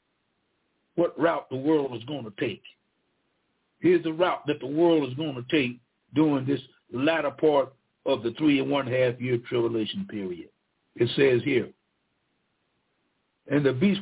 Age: 60-79